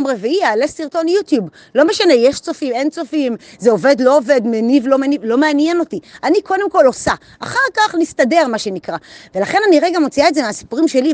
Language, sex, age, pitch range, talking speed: Hebrew, female, 30-49, 245-330 Hz, 200 wpm